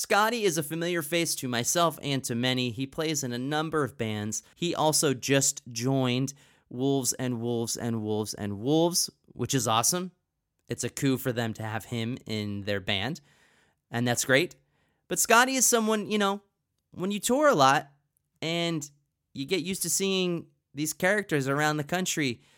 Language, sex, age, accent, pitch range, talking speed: English, male, 30-49, American, 120-165 Hz, 180 wpm